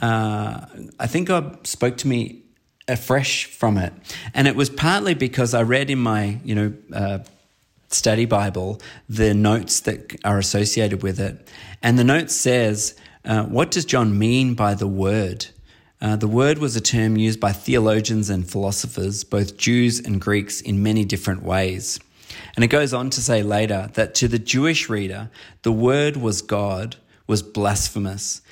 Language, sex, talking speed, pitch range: English, male, 170 wpm, 105-125 Hz